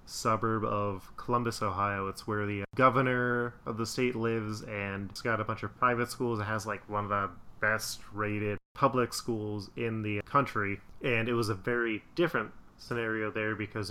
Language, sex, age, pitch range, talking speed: English, male, 20-39, 105-120 Hz, 180 wpm